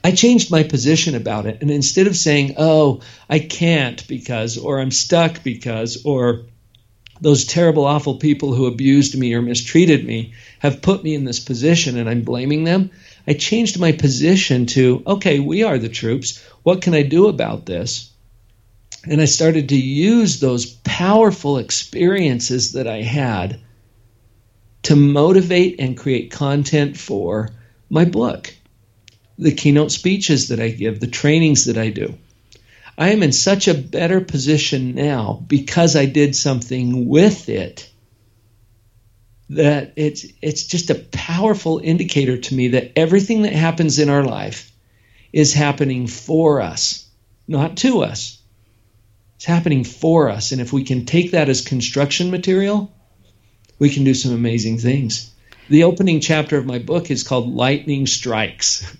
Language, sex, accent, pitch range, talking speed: English, male, American, 115-160 Hz, 155 wpm